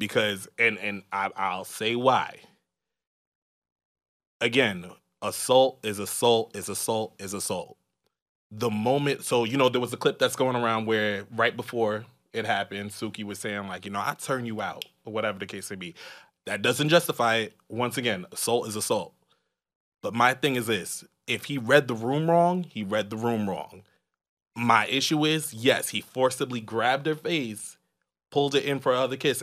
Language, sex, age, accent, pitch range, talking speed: English, male, 20-39, American, 105-125 Hz, 180 wpm